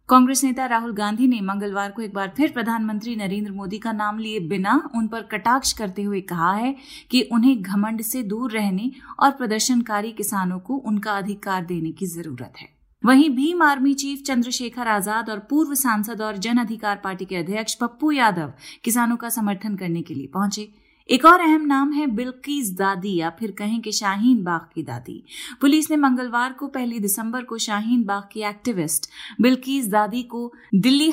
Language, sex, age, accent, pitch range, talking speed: Hindi, female, 30-49, native, 200-255 Hz, 180 wpm